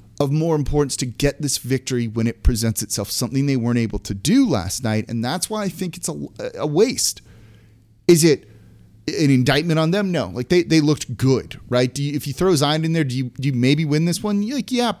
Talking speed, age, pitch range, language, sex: 240 wpm, 30-49, 115-165 Hz, English, male